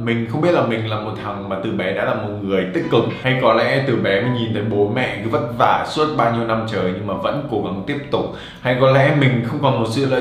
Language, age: Vietnamese, 20-39